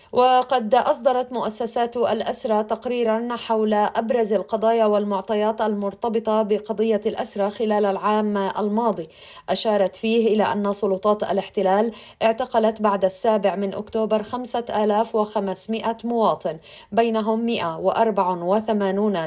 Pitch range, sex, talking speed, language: 200-230 Hz, female, 100 wpm, Arabic